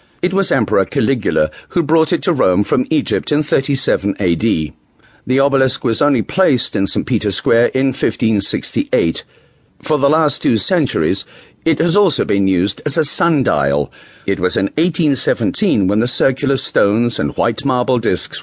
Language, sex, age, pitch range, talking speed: English, male, 50-69, 100-160 Hz, 165 wpm